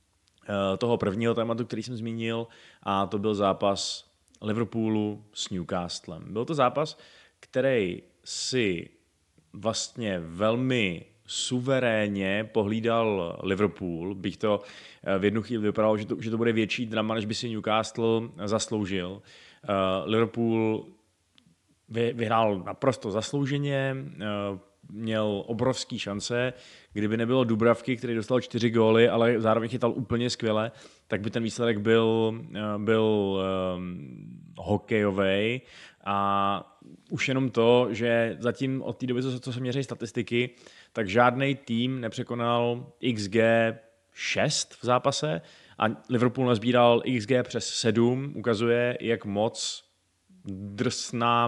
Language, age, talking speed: Czech, 30-49, 115 wpm